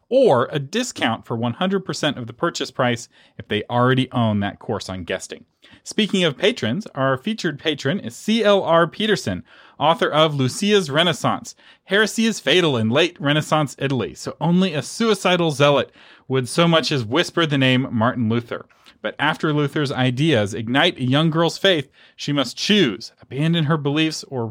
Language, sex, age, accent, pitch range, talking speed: English, male, 30-49, American, 120-170 Hz, 165 wpm